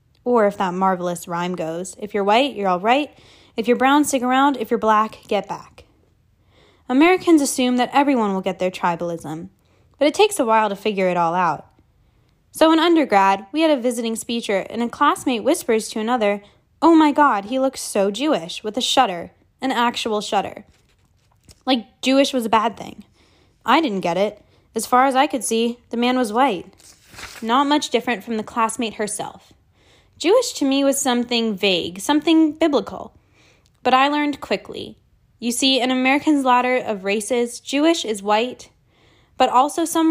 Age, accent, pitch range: 10-29, American, 220-280 Hz